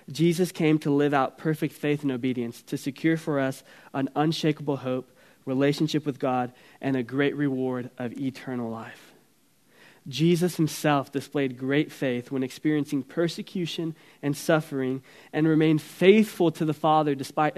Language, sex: English, male